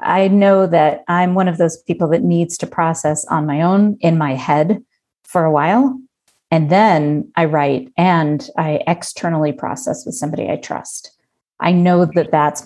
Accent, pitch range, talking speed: American, 155-185 Hz, 175 wpm